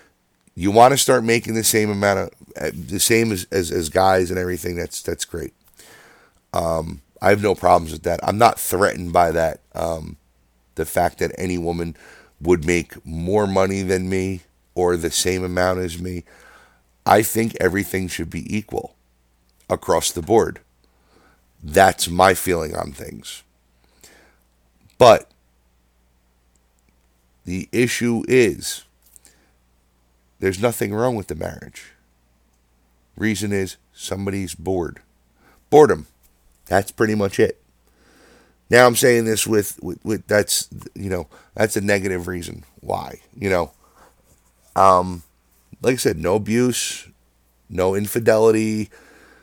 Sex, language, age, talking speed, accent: male, English, 50-69, 130 wpm, American